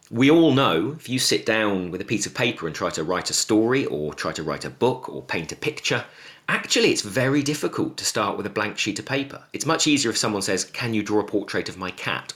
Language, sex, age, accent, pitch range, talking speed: English, male, 40-59, British, 95-140 Hz, 260 wpm